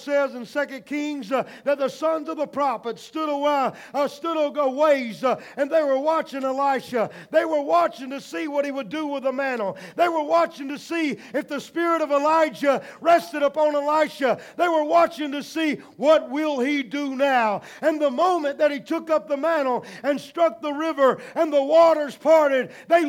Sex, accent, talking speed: male, American, 200 wpm